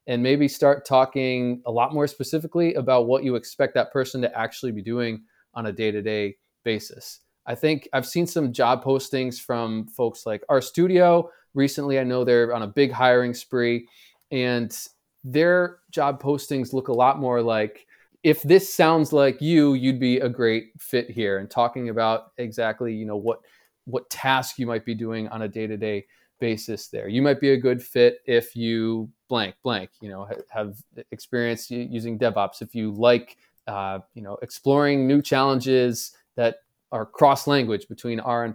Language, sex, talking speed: English, male, 175 wpm